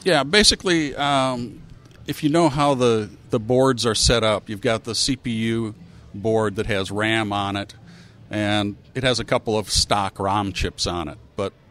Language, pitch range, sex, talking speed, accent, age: English, 105-130 Hz, male, 180 wpm, American, 50-69